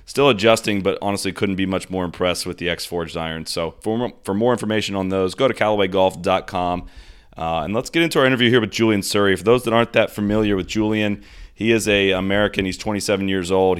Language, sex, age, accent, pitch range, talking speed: English, male, 30-49, American, 85-100 Hz, 220 wpm